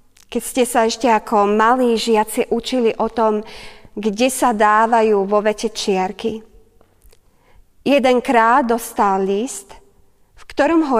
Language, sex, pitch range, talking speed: Slovak, female, 215-255 Hz, 125 wpm